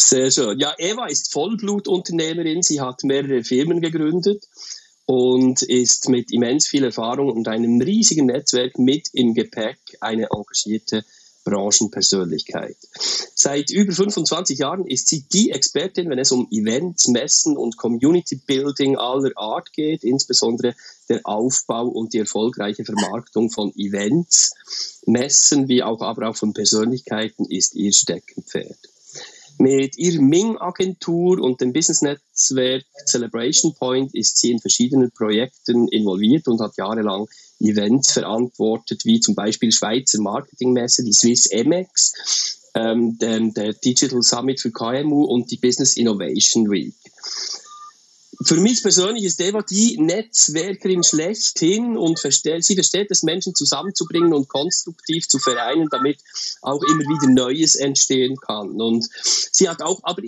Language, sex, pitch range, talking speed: German, male, 120-175 Hz, 130 wpm